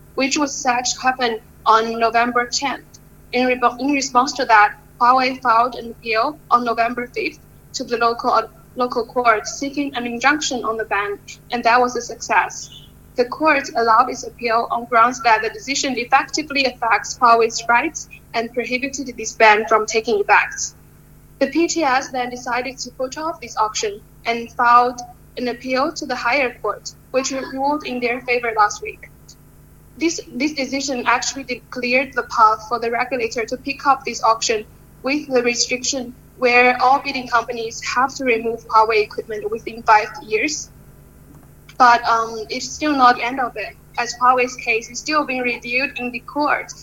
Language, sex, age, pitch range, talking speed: English, female, 10-29, 235-270 Hz, 165 wpm